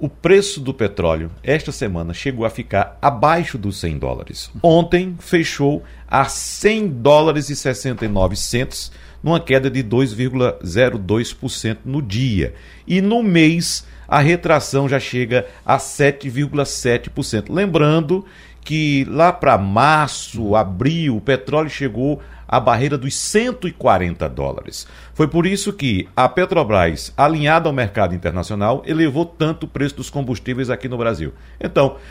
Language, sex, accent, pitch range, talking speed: Portuguese, male, Brazilian, 105-160 Hz, 130 wpm